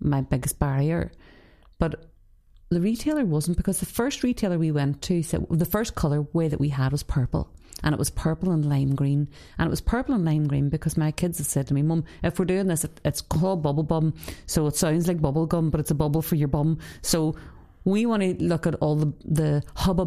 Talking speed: 230 wpm